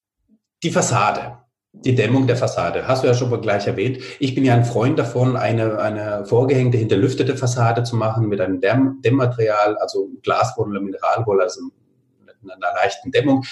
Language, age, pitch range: German, 40-59, 115-140 Hz